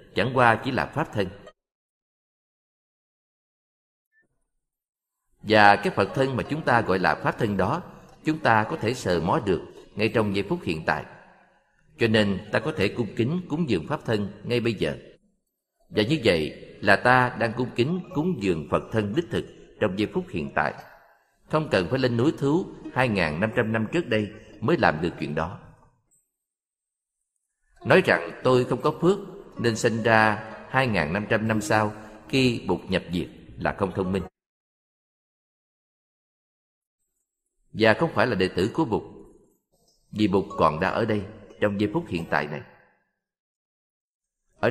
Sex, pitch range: male, 100-130 Hz